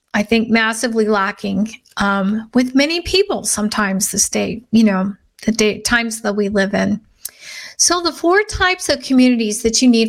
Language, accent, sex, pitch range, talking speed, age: English, American, female, 210-265 Hz, 170 wpm, 50-69